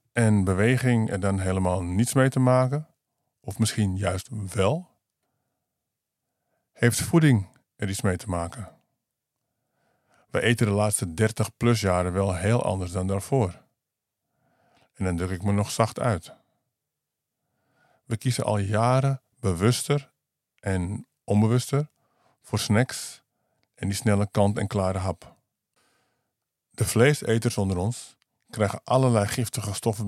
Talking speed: 130 wpm